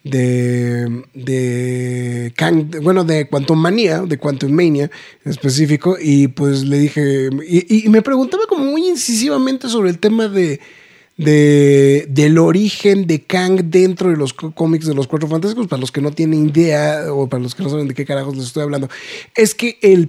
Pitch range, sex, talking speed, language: 135-165 Hz, male, 175 wpm, Spanish